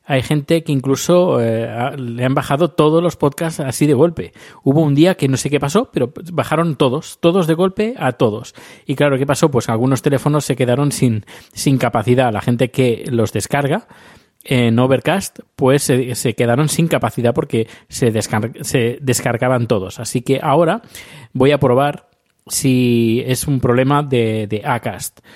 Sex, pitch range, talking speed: male, 115-145 Hz, 175 wpm